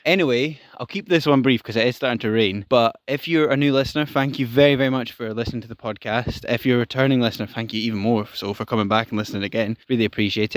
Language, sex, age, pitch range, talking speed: English, male, 10-29, 110-130 Hz, 260 wpm